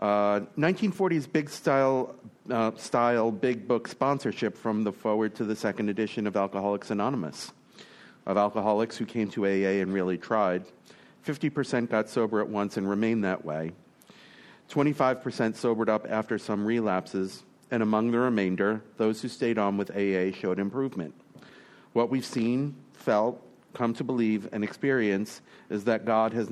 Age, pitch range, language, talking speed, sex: 40-59, 105-130 Hz, English, 150 wpm, male